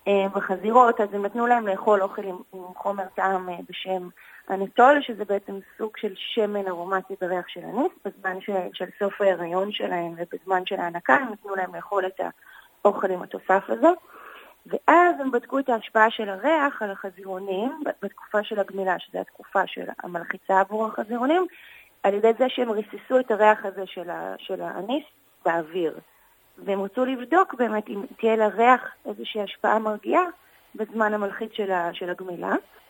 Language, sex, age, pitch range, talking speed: Hebrew, female, 30-49, 190-235 Hz, 150 wpm